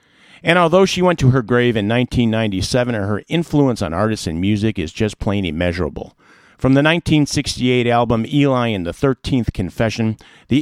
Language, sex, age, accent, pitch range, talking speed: English, male, 50-69, American, 100-130 Hz, 165 wpm